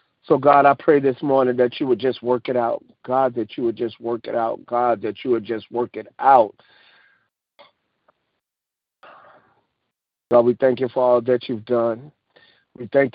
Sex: male